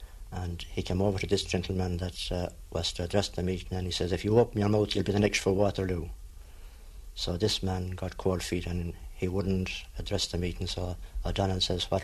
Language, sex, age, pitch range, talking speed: English, male, 60-79, 85-95 Hz, 220 wpm